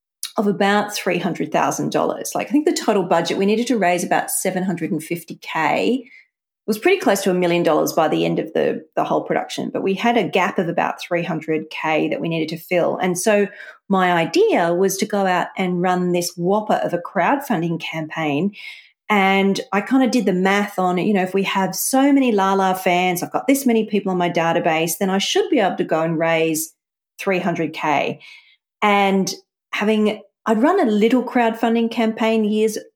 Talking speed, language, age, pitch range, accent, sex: 190 wpm, English, 40-59, 170-220 Hz, Australian, female